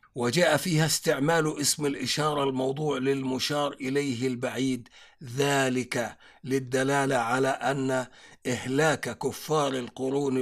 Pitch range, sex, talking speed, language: 125-150 Hz, male, 90 wpm, Arabic